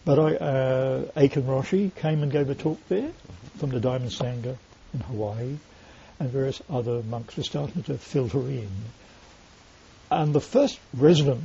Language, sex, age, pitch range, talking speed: English, male, 60-79, 100-145 Hz, 155 wpm